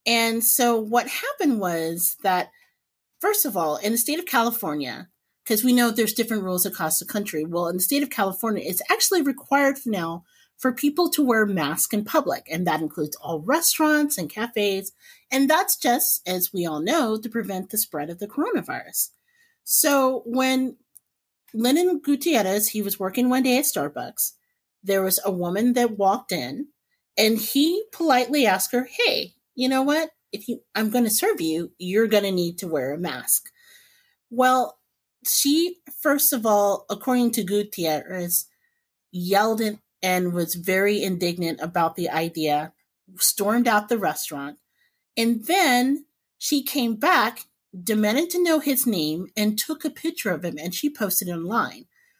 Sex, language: female, English